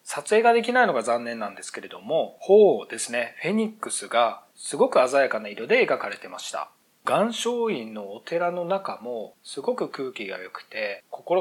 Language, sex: Japanese, male